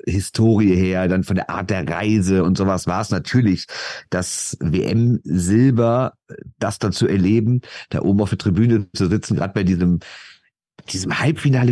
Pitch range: 95-145 Hz